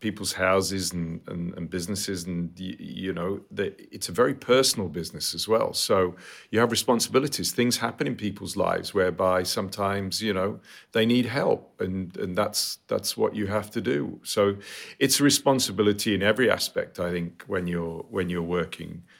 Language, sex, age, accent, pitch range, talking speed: English, male, 40-59, British, 90-110 Hz, 180 wpm